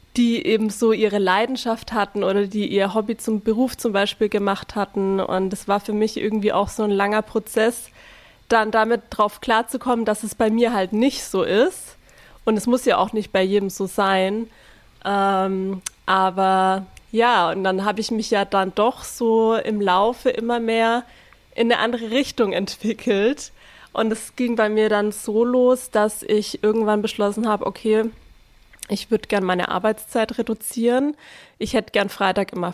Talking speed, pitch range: 175 wpm, 200-230 Hz